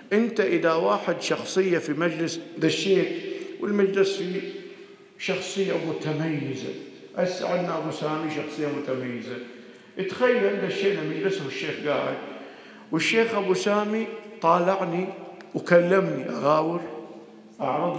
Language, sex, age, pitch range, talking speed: Arabic, male, 50-69, 165-250 Hz, 95 wpm